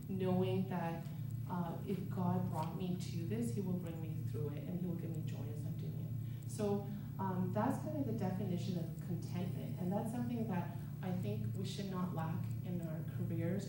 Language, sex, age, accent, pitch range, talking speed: English, female, 30-49, American, 125-160 Hz, 205 wpm